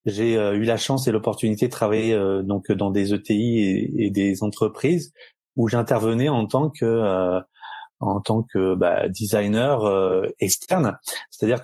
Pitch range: 100-120 Hz